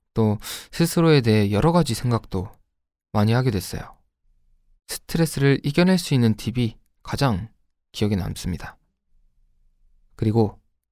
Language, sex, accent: Korean, male, native